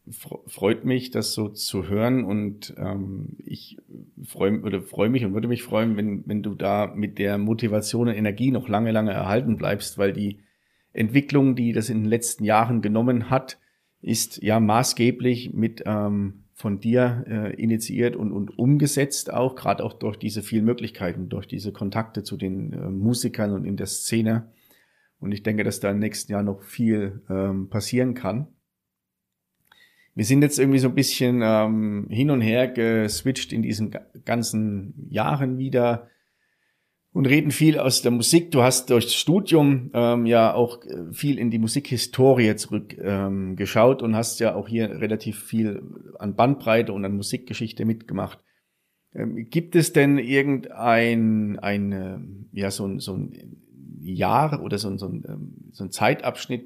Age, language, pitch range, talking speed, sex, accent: 40-59, German, 105-125 Hz, 160 wpm, male, German